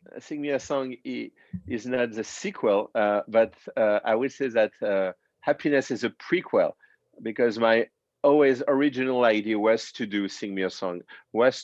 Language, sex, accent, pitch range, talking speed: English, male, French, 100-120 Hz, 170 wpm